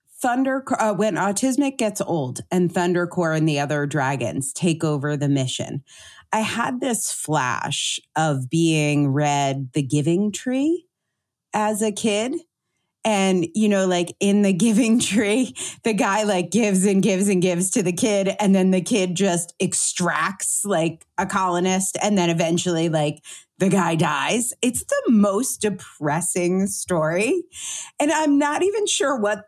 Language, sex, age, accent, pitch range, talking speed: English, female, 30-49, American, 170-235 Hz, 155 wpm